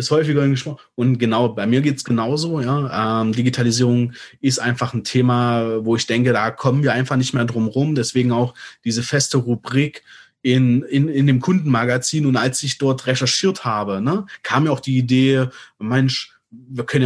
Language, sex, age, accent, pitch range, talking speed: German, male, 30-49, German, 120-145 Hz, 185 wpm